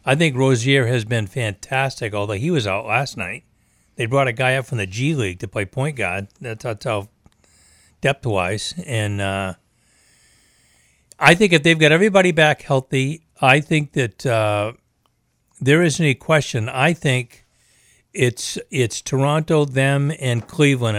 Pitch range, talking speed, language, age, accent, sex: 110-145 Hz, 155 wpm, English, 60-79, American, male